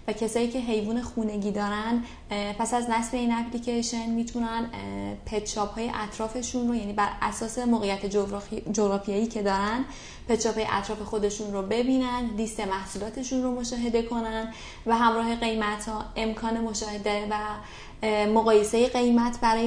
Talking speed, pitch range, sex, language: 135 wpm, 210-240 Hz, female, Persian